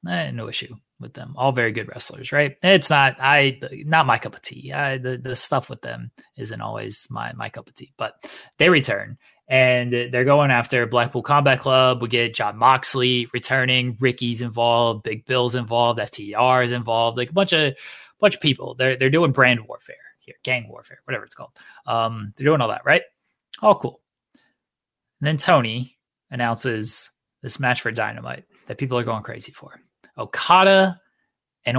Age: 20-39